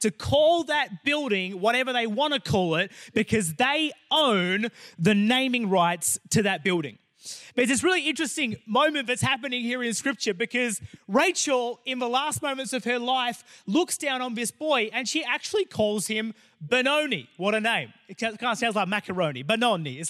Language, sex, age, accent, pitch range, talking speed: English, male, 30-49, Australian, 215-275 Hz, 180 wpm